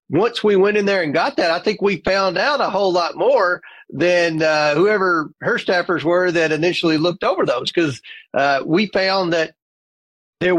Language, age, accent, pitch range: English, 40-59, American, 150-180 Hz